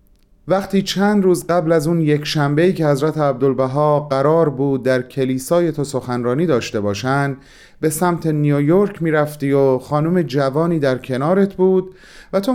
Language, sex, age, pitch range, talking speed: Persian, male, 30-49, 120-155 Hz, 150 wpm